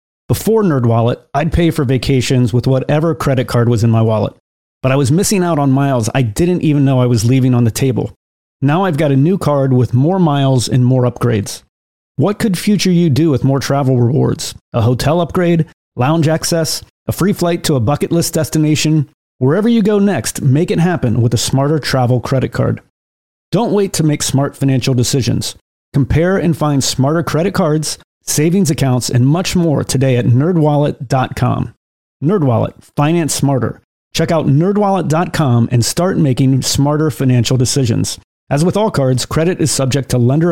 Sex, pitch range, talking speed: male, 125-160 Hz, 180 wpm